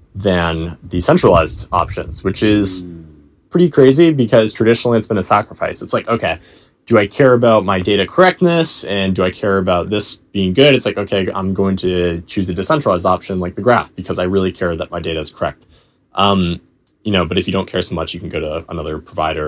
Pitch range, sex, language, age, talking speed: 85-105 Hz, male, English, 20-39, 215 wpm